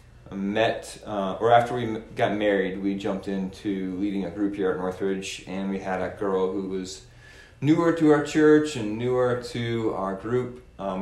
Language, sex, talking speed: English, male, 180 wpm